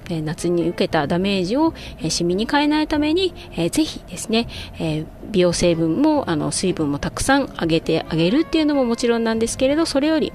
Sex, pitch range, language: female, 165-265 Hz, Japanese